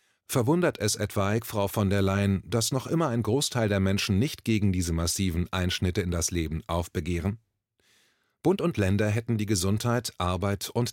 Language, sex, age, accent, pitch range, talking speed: German, male, 30-49, German, 95-120 Hz, 170 wpm